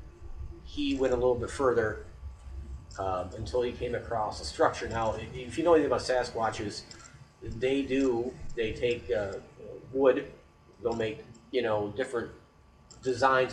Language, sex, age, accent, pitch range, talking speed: English, male, 40-59, American, 100-125 Hz, 140 wpm